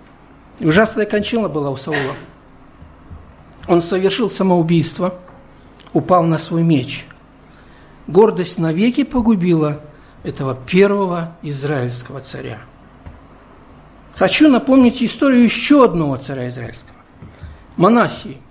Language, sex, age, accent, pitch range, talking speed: Russian, male, 60-79, native, 155-215 Hz, 90 wpm